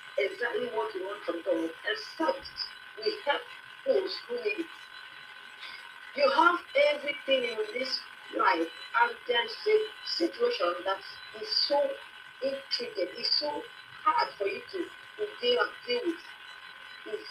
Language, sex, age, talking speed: English, female, 40-59, 130 wpm